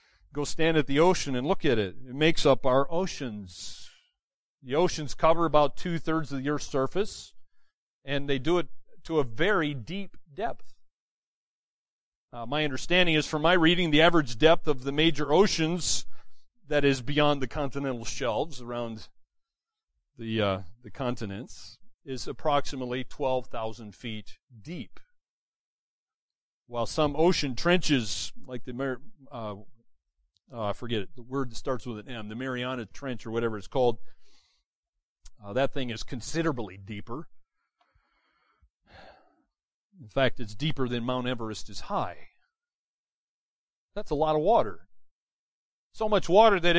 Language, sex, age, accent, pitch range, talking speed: English, male, 40-59, American, 120-165 Hz, 140 wpm